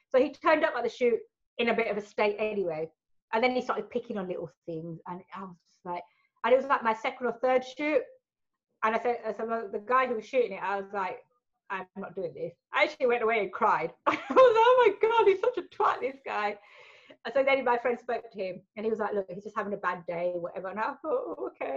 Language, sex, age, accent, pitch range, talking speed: English, female, 30-49, British, 195-255 Hz, 265 wpm